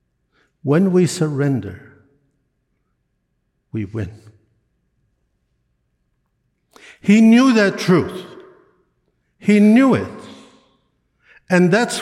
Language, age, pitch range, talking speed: English, 60-79, 120-200 Hz, 70 wpm